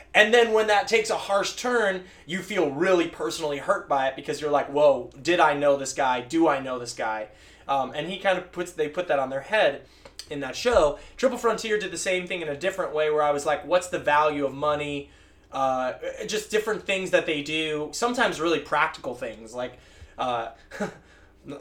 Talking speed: 210 wpm